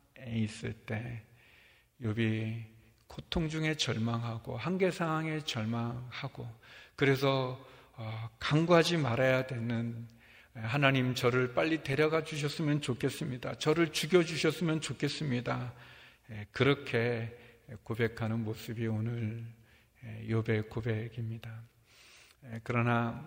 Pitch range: 115-150 Hz